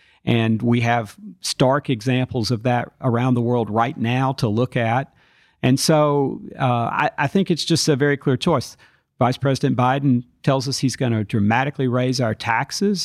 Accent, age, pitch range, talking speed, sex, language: American, 50-69, 120-140 Hz, 180 wpm, male, English